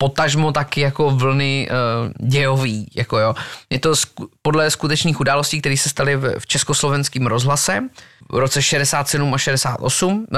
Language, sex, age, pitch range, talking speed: Slovak, male, 20-39, 130-155 Hz, 150 wpm